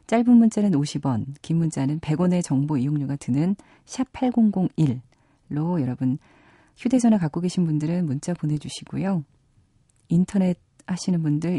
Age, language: 40-59, Korean